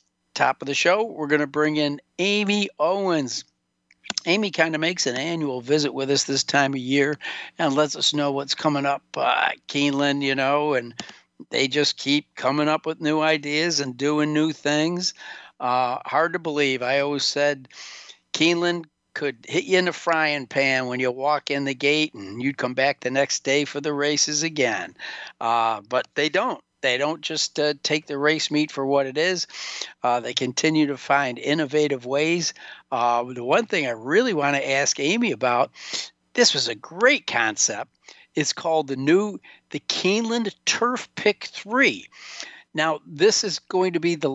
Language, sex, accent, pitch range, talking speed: English, male, American, 135-165 Hz, 185 wpm